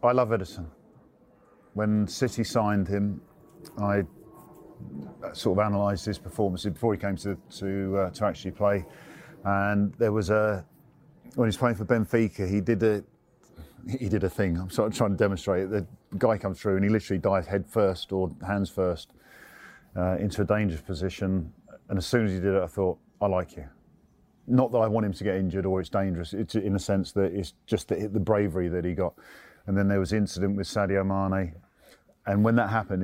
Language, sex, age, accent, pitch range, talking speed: English, male, 40-59, British, 90-105 Hz, 205 wpm